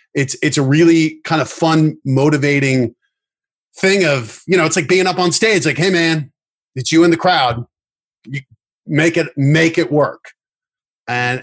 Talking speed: 170 wpm